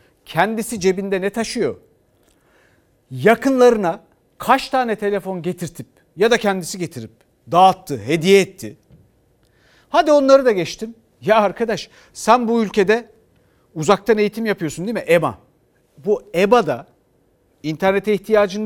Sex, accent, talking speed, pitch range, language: male, native, 115 wpm, 180-250 Hz, Turkish